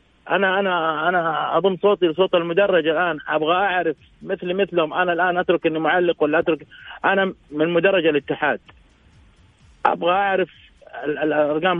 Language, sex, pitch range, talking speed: Arabic, male, 155-195 Hz, 130 wpm